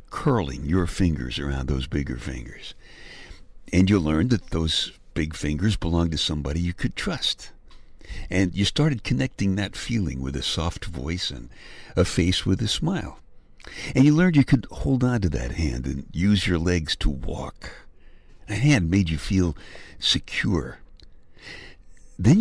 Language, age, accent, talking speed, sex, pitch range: English, 60-79, American, 160 wpm, male, 70-100 Hz